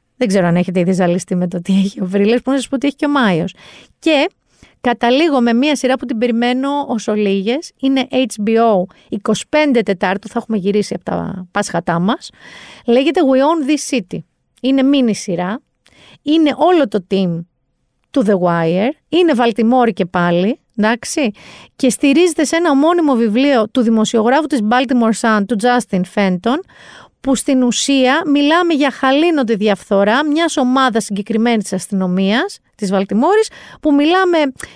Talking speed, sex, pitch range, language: 160 wpm, female, 205-295 Hz, Greek